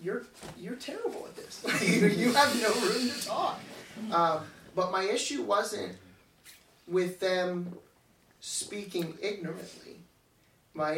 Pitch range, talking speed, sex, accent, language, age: 165-190 Hz, 115 wpm, male, American, English, 30-49